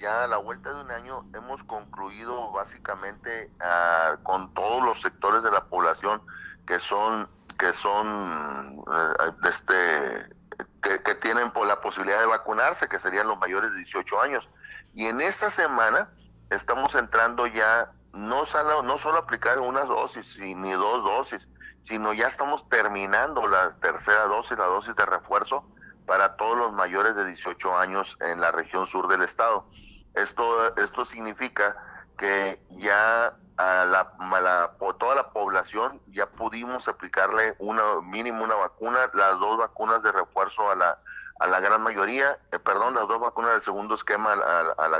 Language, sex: Spanish, male